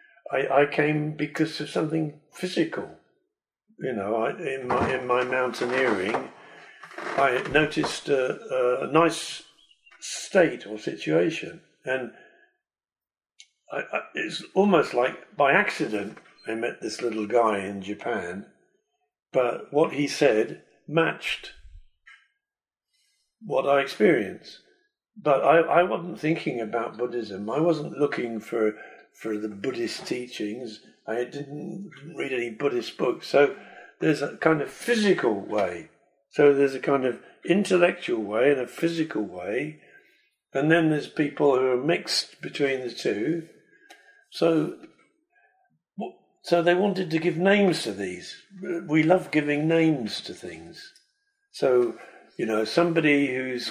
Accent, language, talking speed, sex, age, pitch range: British, Czech, 125 wpm, male, 50-69, 125-200 Hz